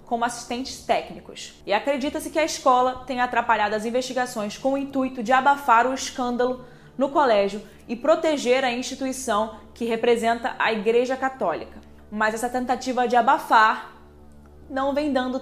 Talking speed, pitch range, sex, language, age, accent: 150 wpm, 220-280 Hz, female, Portuguese, 20-39, Brazilian